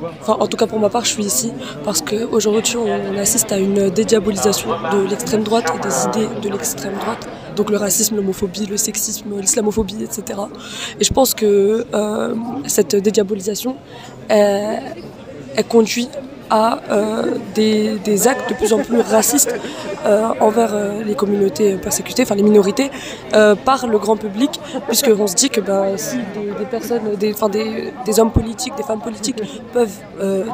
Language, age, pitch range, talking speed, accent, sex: French, 20-39, 205-230 Hz, 165 wpm, French, female